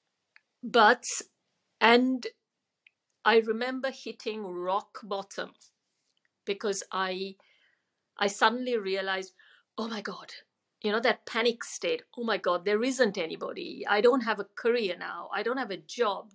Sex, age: female, 50-69